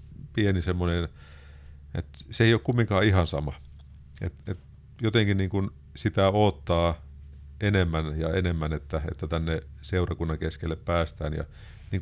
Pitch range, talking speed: 80-105 Hz, 135 wpm